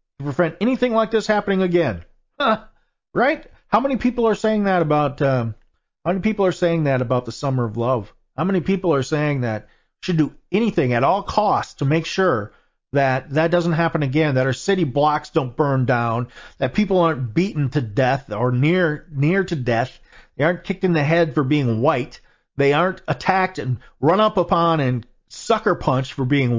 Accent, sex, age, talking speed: American, male, 40-59, 195 wpm